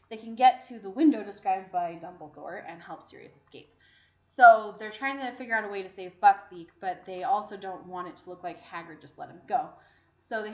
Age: 20-39